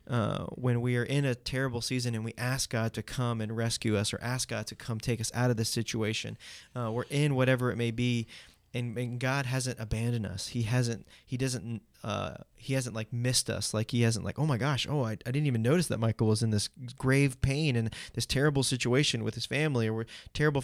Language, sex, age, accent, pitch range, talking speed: English, male, 20-39, American, 110-130 Hz, 235 wpm